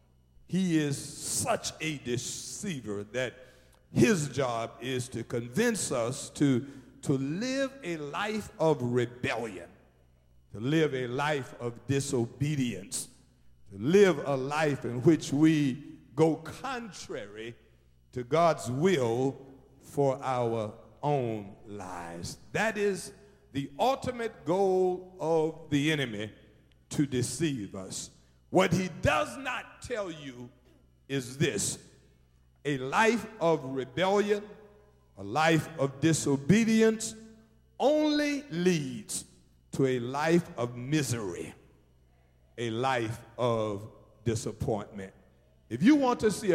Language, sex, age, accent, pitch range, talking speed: English, male, 50-69, American, 115-170 Hz, 110 wpm